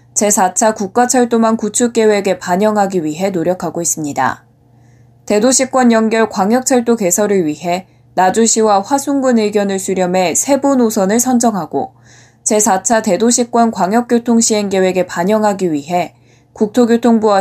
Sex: female